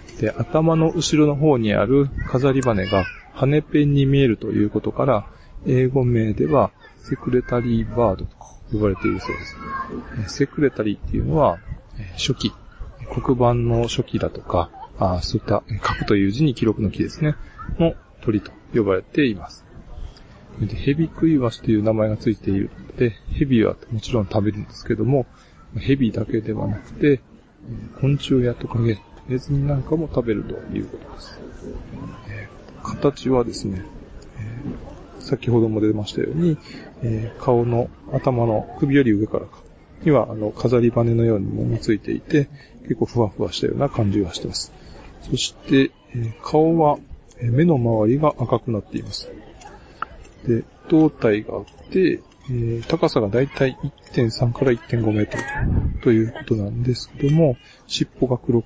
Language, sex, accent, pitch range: Japanese, male, native, 110-135 Hz